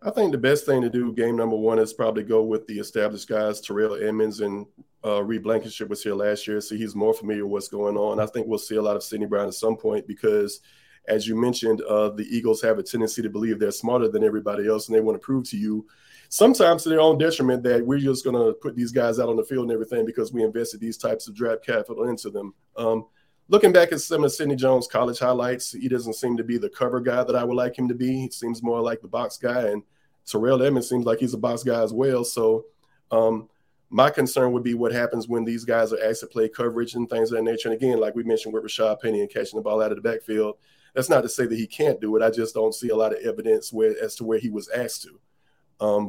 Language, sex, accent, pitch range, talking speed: English, male, American, 110-125 Hz, 270 wpm